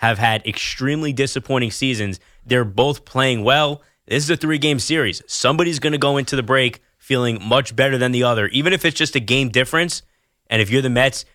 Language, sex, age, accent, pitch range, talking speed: English, male, 20-39, American, 115-140 Hz, 205 wpm